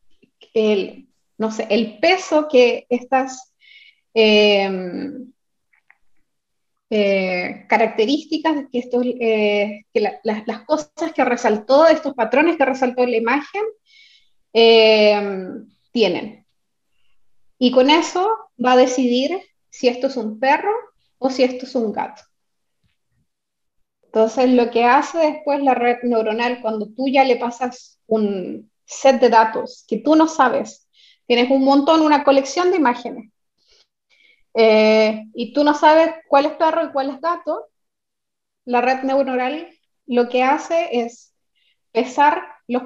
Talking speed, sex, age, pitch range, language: 135 wpm, female, 30-49, 225-295 Hz, Spanish